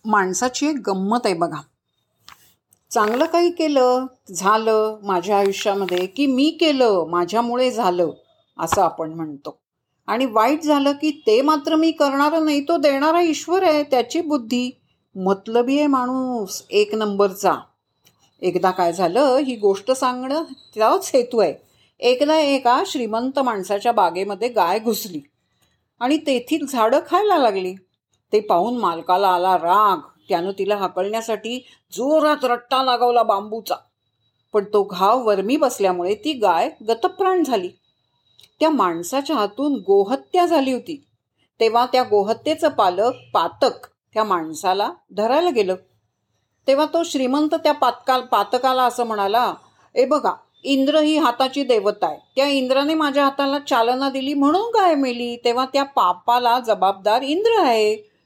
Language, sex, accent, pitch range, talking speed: Marathi, female, native, 200-290 Hz, 130 wpm